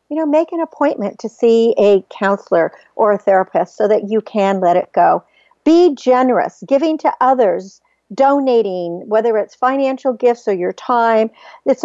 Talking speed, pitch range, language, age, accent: 165 wpm, 200-260 Hz, English, 50-69, American